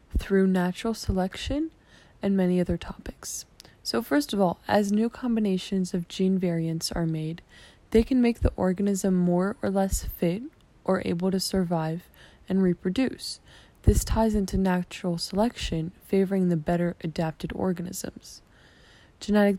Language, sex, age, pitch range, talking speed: English, female, 20-39, 170-195 Hz, 140 wpm